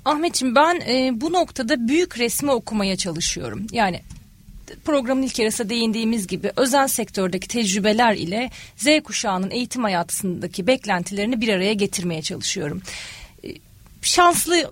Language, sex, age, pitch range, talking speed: Turkish, female, 40-59, 205-260 Hz, 120 wpm